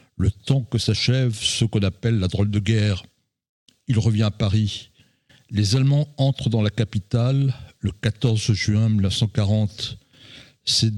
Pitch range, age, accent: 105-135 Hz, 60-79, French